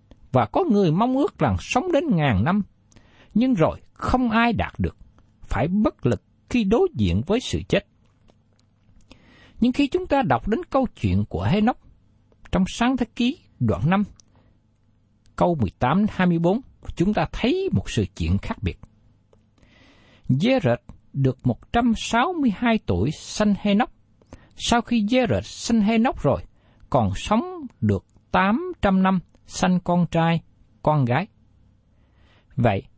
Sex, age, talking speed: male, 60-79, 140 wpm